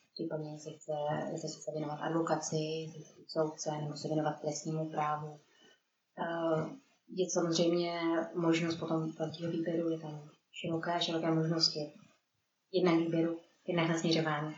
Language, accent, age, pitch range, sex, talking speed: Czech, native, 20-39, 160-180 Hz, female, 110 wpm